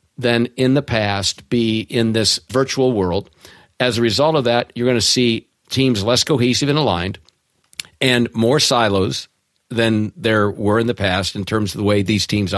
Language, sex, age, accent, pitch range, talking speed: English, male, 50-69, American, 100-125 Hz, 185 wpm